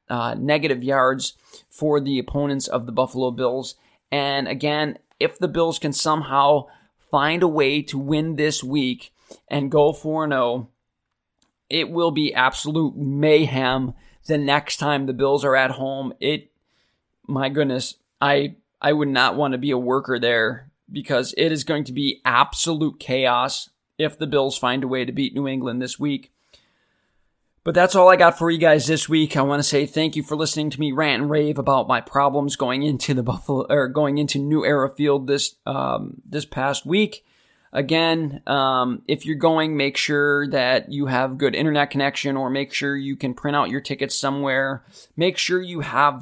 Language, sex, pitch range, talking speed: English, male, 135-150 Hz, 185 wpm